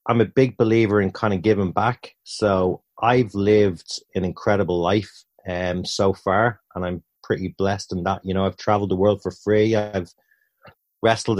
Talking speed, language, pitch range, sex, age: 180 wpm, English, 95-110 Hz, male, 30-49